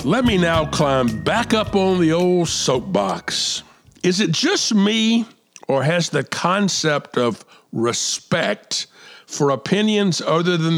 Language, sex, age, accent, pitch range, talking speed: English, male, 50-69, American, 130-185 Hz, 135 wpm